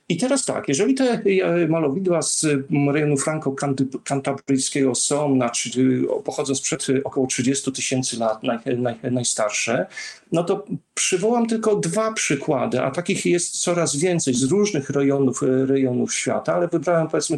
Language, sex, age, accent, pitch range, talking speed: Polish, male, 40-59, native, 135-185 Hz, 120 wpm